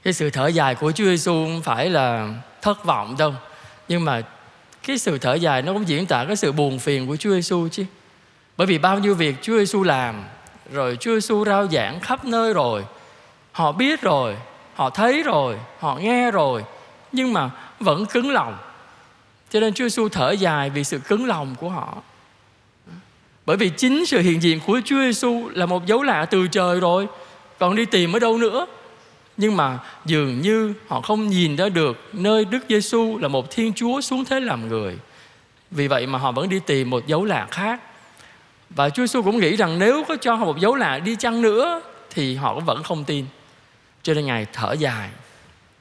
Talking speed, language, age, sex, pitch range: 200 wpm, Vietnamese, 20-39, male, 145-215 Hz